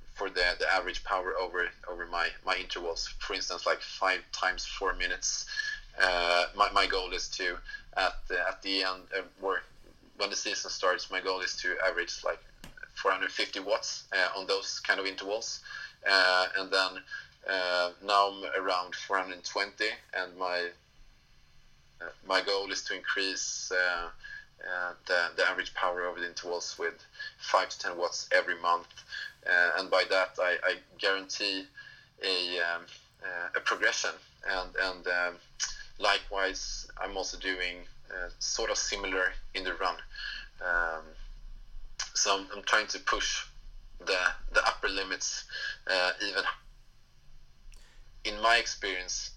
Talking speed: 145 wpm